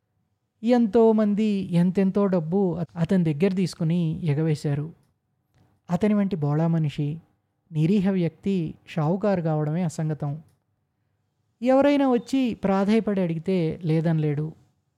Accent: native